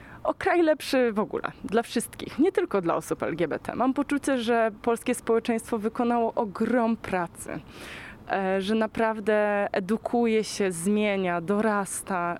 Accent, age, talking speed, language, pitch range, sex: native, 20-39, 125 wpm, Polish, 185-235 Hz, female